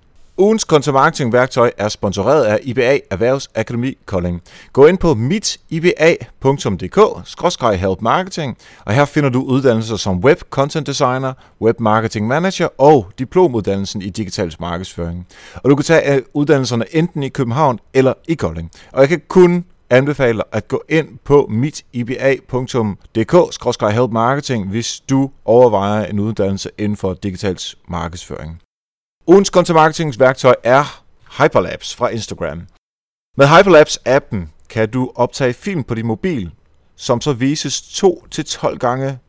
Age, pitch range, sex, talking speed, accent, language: 30-49, 105-145 Hz, male, 130 wpm, native, Danish